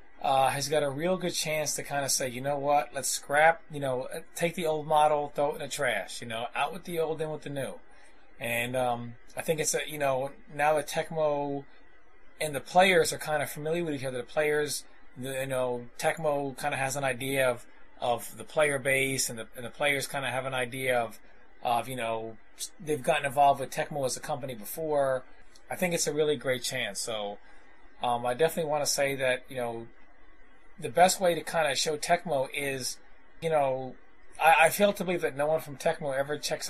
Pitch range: 130-165 Hz